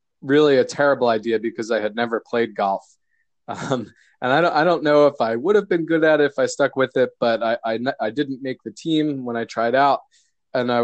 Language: English